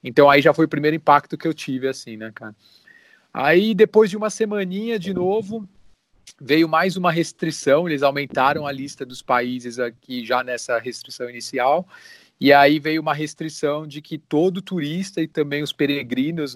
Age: 30-49